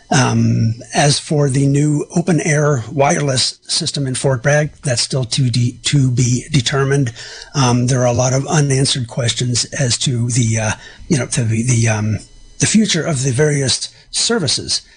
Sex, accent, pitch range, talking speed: male, American, 120-150 Hz, 170 wpm